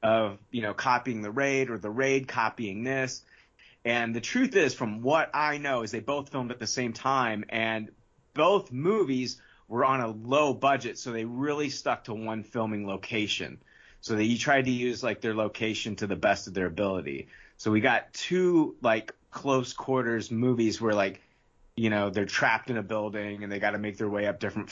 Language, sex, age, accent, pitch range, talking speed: English, male, 30-49, American, 110-140 Hz, 205 wpm